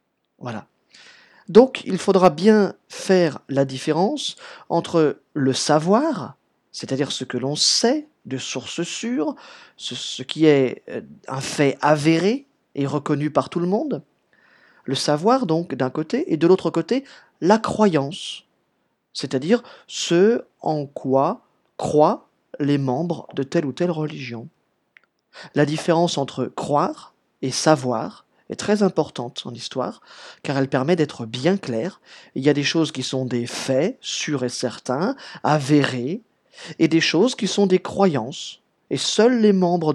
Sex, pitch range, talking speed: male, 130-180 Hz, 145 wpm